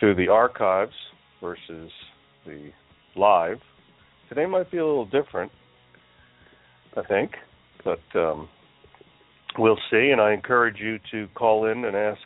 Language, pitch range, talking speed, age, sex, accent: English, 85-105 Hz, 130 wpm, 50-69, male, American